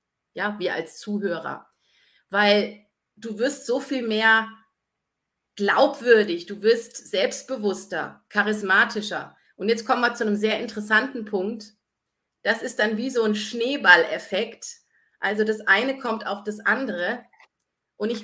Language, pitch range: German, 195-225 Hz